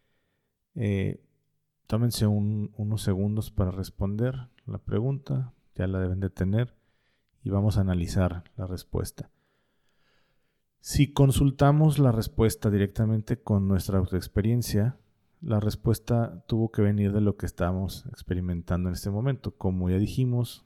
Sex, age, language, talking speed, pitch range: male, 40-59, English, 130 wpm, 95-110 Hz